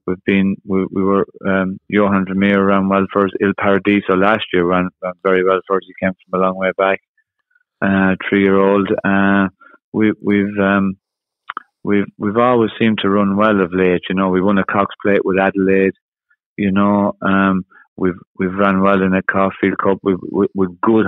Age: 30-49